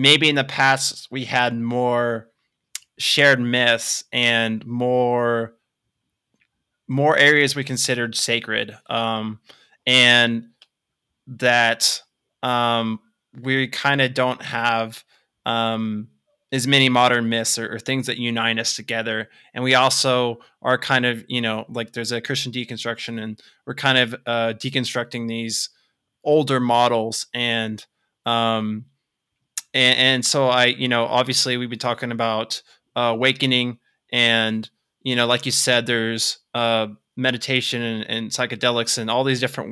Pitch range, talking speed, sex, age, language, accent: 115-130 Hz, 135 wpm, male, 20-39, English, American